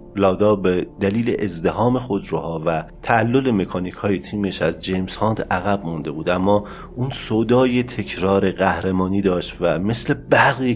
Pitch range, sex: 90-110 Hz, male